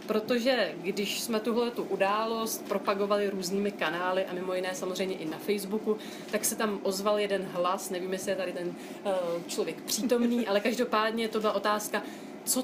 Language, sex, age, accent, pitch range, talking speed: Czech, female, 30-49, native, 205-255 Hz, 165 wpm